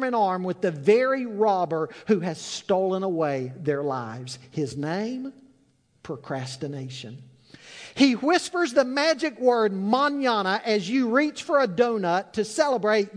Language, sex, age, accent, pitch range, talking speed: English, male, 50-69, American, 135-220 Hz, 130 wpm